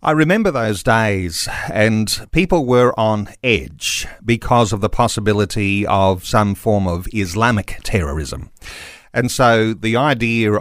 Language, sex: English, male